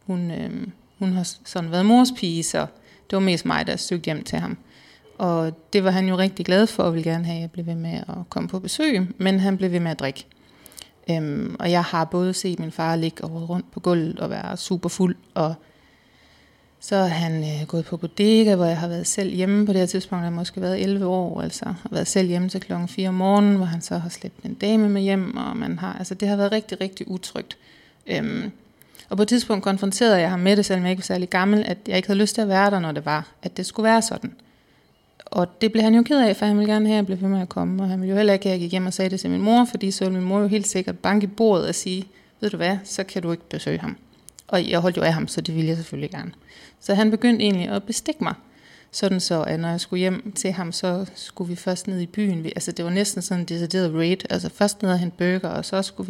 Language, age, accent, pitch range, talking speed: Danish, 30-49, native, 175-205 Hz, 275 wpm